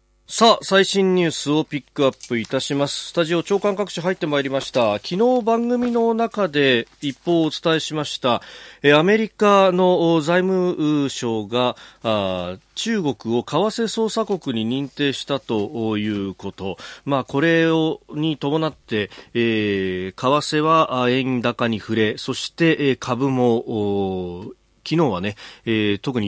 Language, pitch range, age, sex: Japanese, 105-165 Hz, 40-59, male